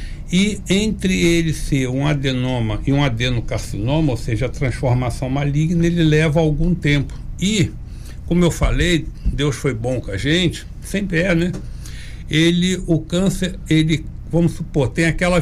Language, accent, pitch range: Portuguese, Brazilian, 135-175 Hz